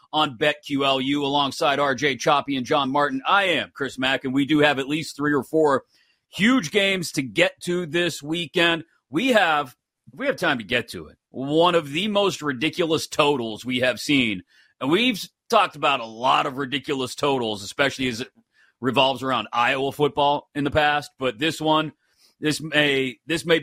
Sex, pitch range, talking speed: male, 130-165 Hz, 185 wpm